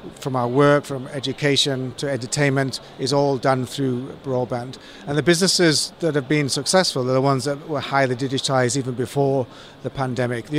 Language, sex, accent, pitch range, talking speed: English, male, British, 130-150 Hz, 175 wpm